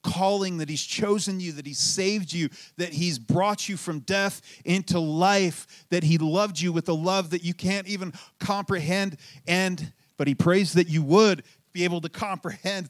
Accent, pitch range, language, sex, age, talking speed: American, 160-195 Hz, English, male, 40-59, 185 wpm